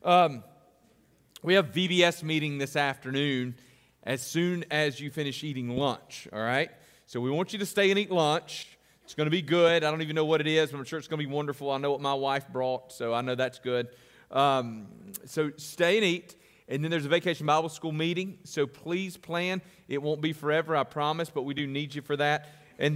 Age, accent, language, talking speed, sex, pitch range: 40-59, American, English, 225 wpm, male, 135-170 Hz